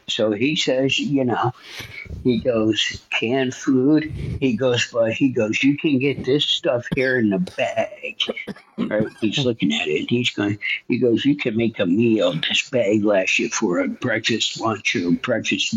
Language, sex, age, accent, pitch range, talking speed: English, male, 60-79, American, 110-160 Hz, 180 wpm